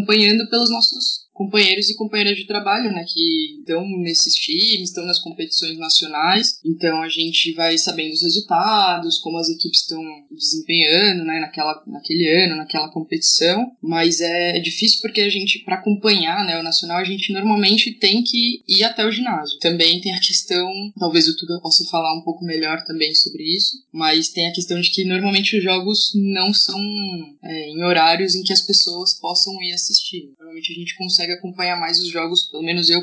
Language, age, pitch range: Portuguese, 20-39, 160-195 Hz